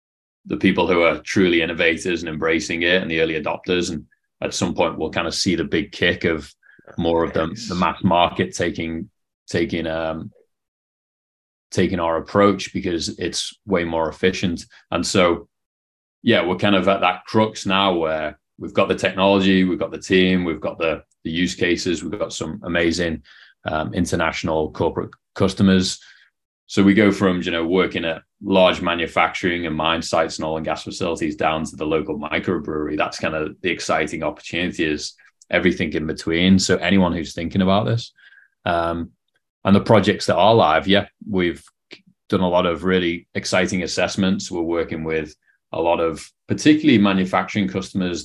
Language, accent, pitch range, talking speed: English, British, 80-95 Hz, 175 wpm